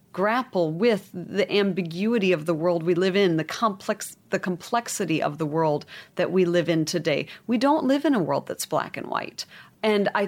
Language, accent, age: English, American, 40-59